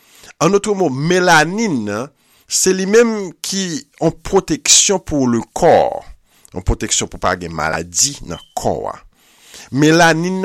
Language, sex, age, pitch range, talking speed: French, male, 50-69, 100-145 Hz, 125 wpm